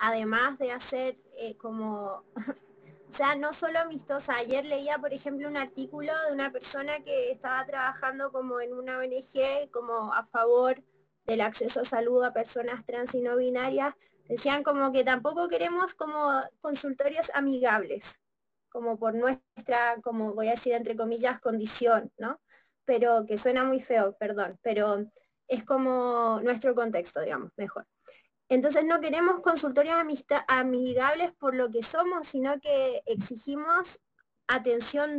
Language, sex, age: Spanish, female, 20-39